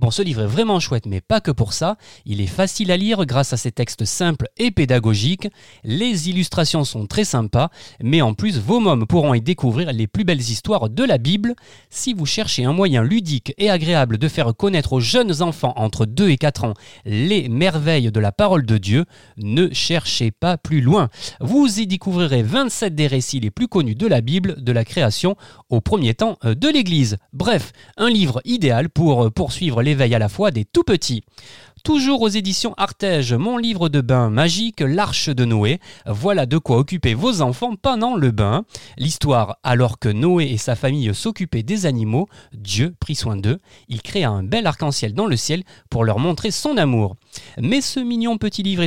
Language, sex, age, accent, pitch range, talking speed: French, male, 30-49, French, 120-190 Hz, 195 wpm